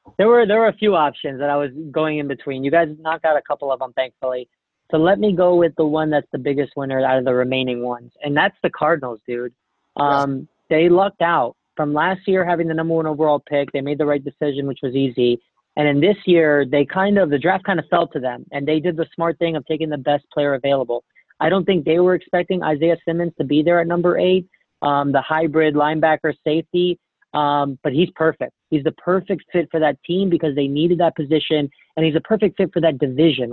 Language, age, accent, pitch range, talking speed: English, 30-49, American, 145-170 Hz, 240 wpm